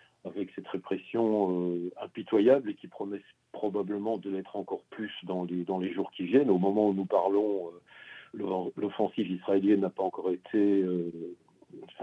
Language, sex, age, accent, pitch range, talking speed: French, male, 50-69, French, 95-110 Hz, 165 wpm